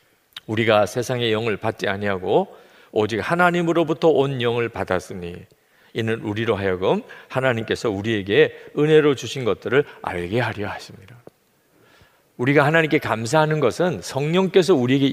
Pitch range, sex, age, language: 115-180 Hz, male, 50-69, Korean